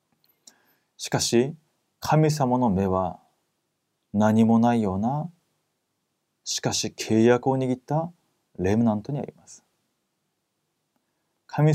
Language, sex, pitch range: Korean, male, 110-150 Hz